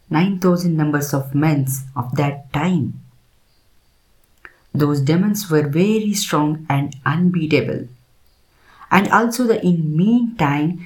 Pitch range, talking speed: 130-175 Hz, 110 wpm